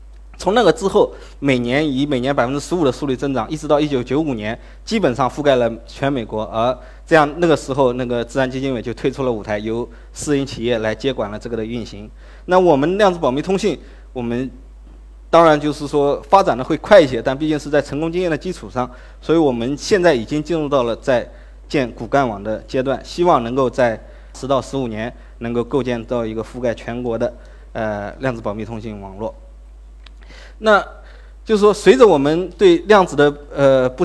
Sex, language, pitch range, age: male, Chinese, 115-150 Hz, 20-39